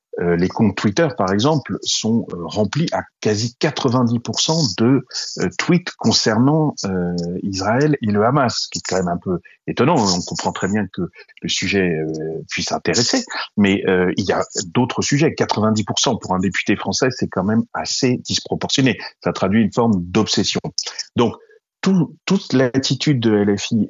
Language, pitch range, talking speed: French, 95-135 Hz, 170 wpm